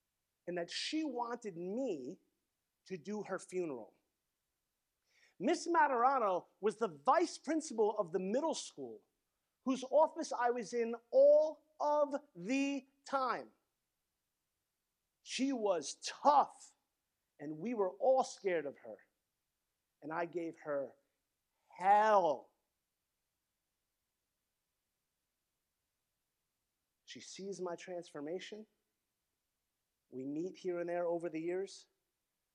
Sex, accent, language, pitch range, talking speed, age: male, American, English, 165-260 Hz, 100 wpm, 40-59